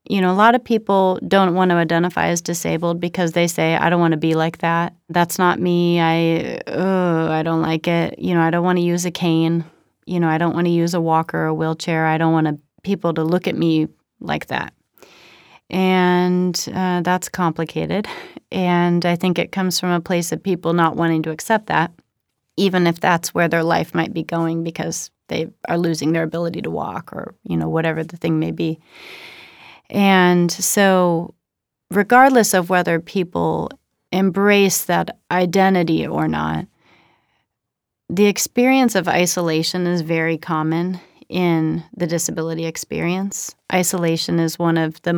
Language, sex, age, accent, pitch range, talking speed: English, female, 30-49, American, 165-185 Hz, 180 wpm